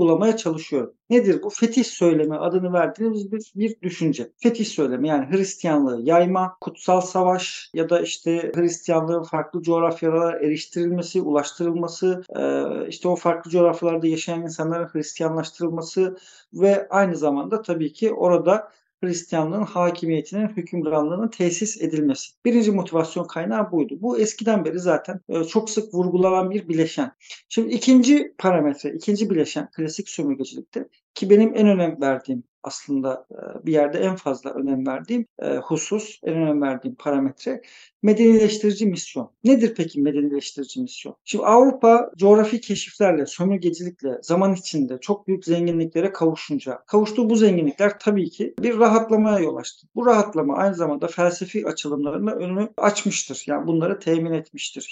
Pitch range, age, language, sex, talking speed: 160-210 Hz, 50-69, Turkish, male, 130 wpm